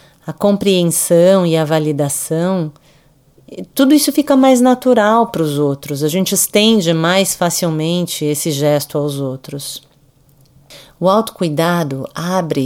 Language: English